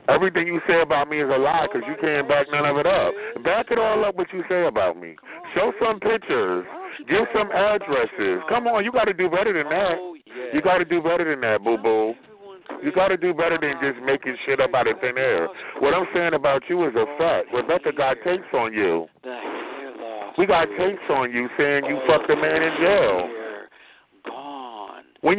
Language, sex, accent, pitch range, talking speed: English, male, American, 145-210 Hz, 210 wpm